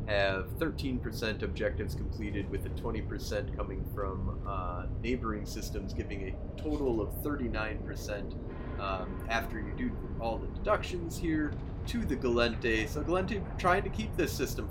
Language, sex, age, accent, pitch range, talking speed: English, male, 30-49, American, 95-115 Hz, 150 wpm